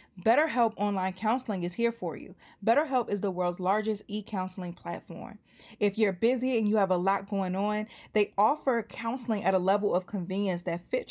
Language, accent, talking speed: English, American, 185 wpm